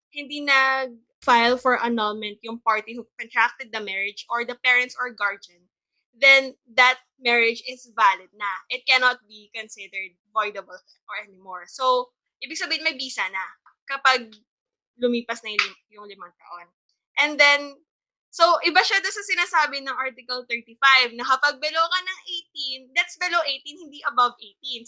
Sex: female